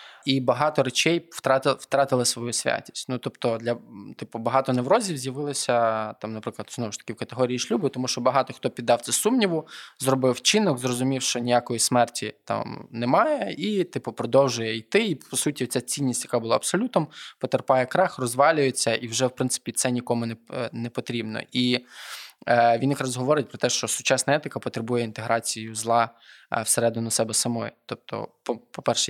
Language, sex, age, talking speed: Ukrainian, male, 20-39, 160 wpm